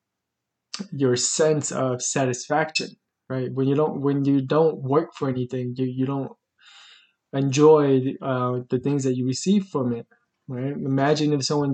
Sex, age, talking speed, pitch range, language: male, 20-39, 160 wpm, 130-145 Hz, English